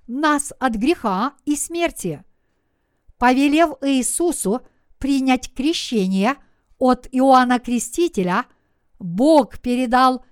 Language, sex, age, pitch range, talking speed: Russian, female, 50-69, 230-305 Hz, 80 wpm